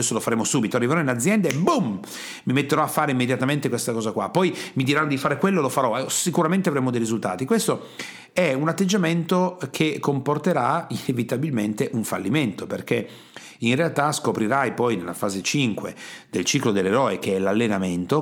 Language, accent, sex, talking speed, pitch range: Italian, native, male, 170 wpm, 115-155 Hz